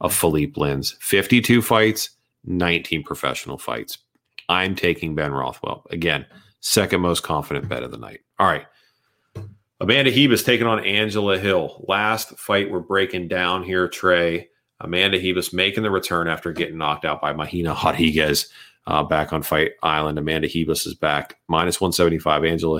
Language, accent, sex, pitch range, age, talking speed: English, American, male, 80-105 Hz, 40-59, 155 wpm